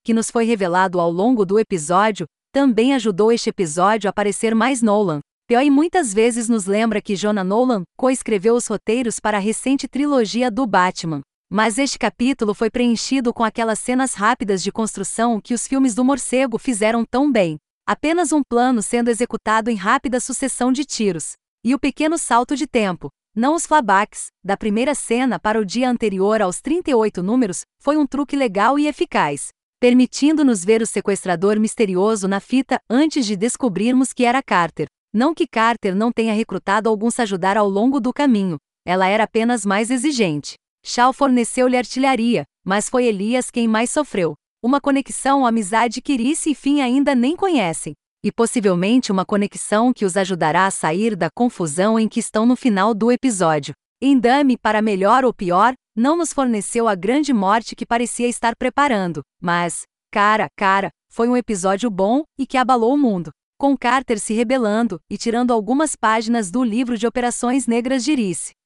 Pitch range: 205-255 Hz